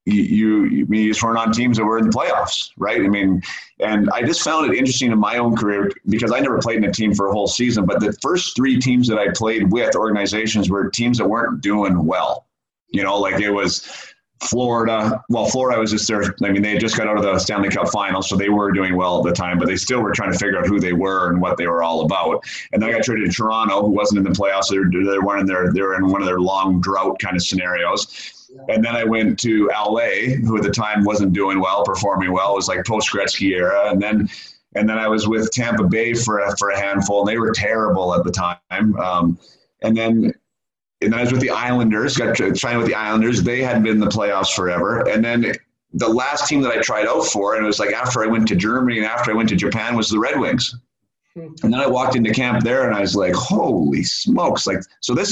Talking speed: 255 wpm